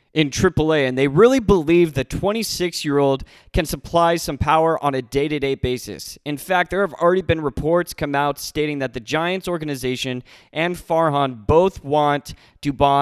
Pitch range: 130-160 Hz